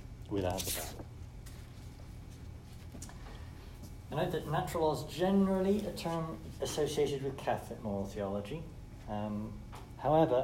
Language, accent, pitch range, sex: English, British, 100-120 Hz, male